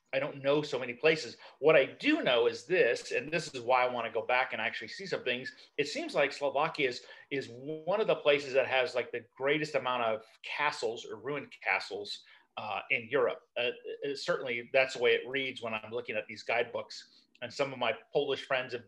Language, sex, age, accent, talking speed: English, male, 40-59, American, 225 wpm